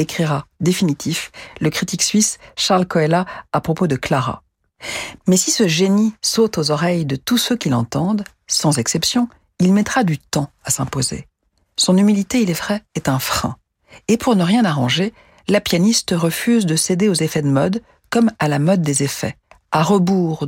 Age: 50-69